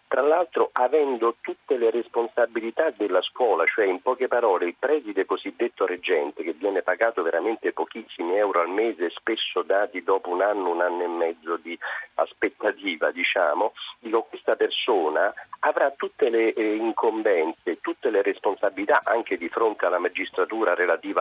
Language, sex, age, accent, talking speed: Italian, male, 40-59, native, 145 wpm